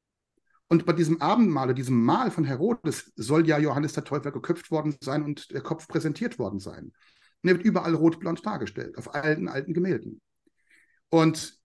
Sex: male